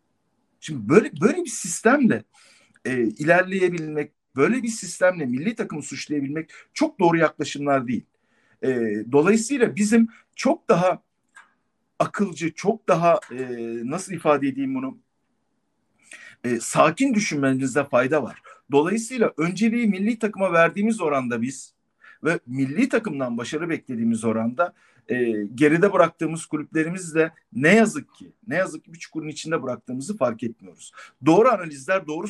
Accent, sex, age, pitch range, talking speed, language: native, male, 50-69, 135-215 Hz, 125 wpm, Turkish